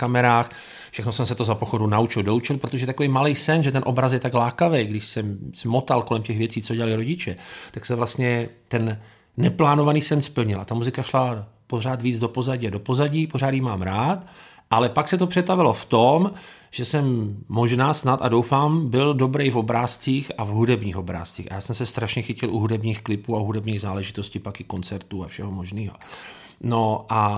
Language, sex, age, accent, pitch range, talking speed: Czech, male, 40-59, native, 110-130 Hz, 195 wpm